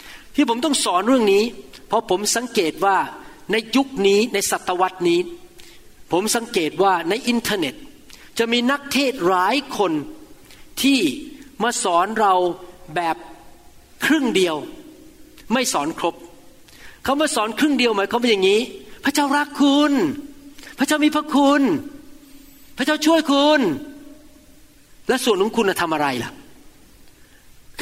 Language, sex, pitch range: Thai, male, 210-300 Hz